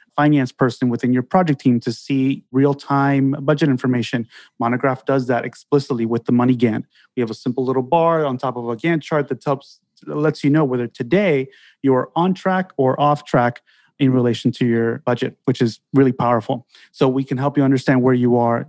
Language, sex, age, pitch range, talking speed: English, male, 30-49, 125-150 Hz, 200 wpm